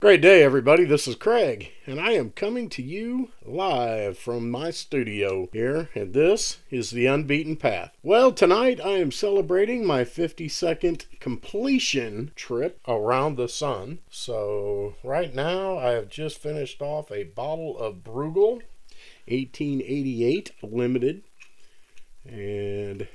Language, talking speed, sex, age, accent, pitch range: English, 130 wpm, male, 40-59, American, 115-170 Hz